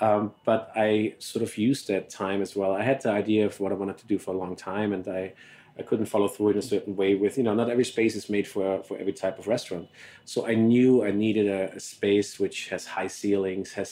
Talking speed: 265 wpm